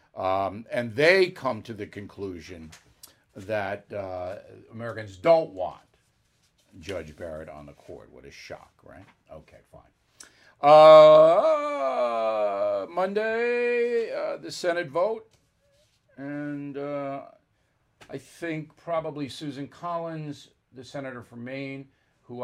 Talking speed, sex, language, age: 110 wpm, male, English, 60-79